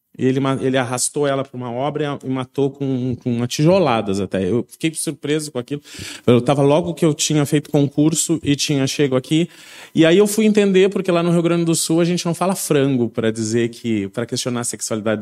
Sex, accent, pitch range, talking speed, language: male, Brazilian, 130-170 Hz, 215 wpm, Portuguese